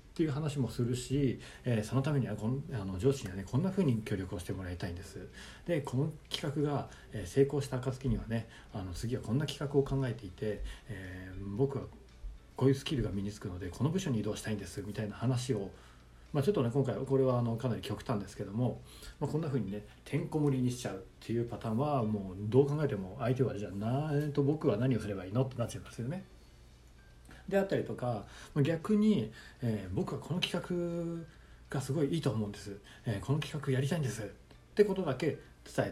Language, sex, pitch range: Japanese, male, 105-145 Hz